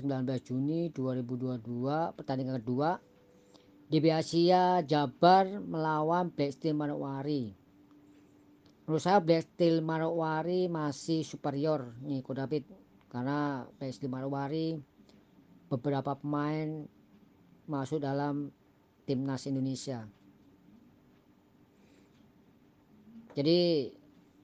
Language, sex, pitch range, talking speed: Indonesian, female, 135-160 Hz, 70 wpm